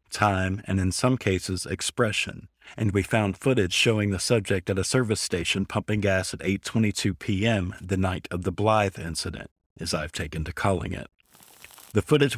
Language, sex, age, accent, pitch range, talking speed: English, male, 50-69, American, 90-110 Hz, 170 wpm